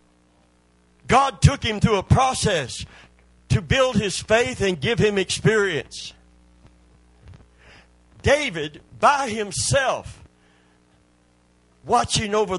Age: 60-79